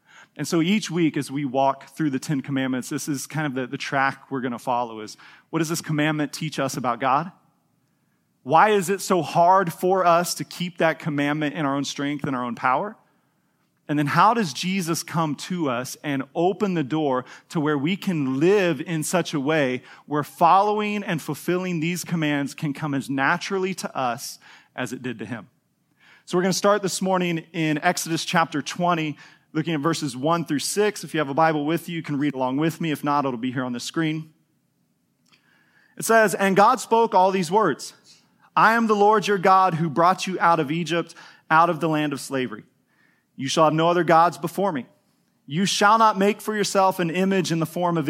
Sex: male